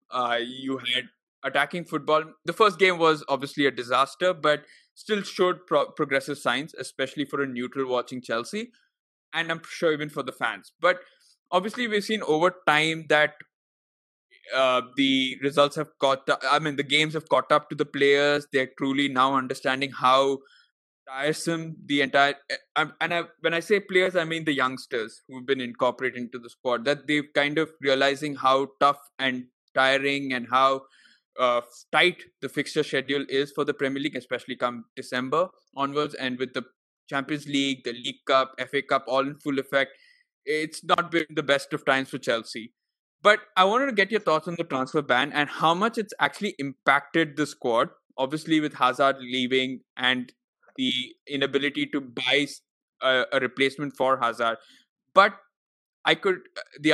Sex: male